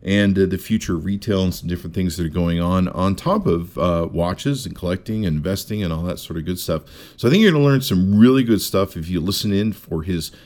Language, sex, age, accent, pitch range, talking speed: English, male, 50-69, American, 90-135 Hz, 270 wpm